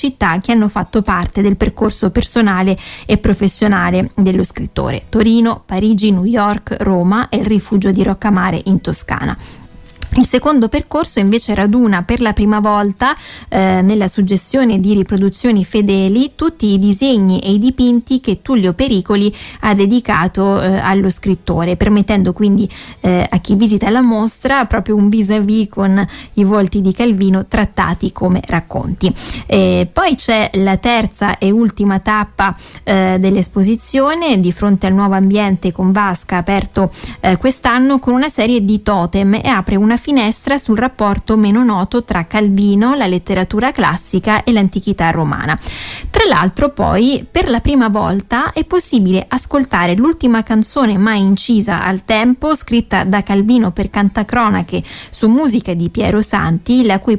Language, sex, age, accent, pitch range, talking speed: Italian, female, 20-39, native, 195-230 Hz, 145 wpm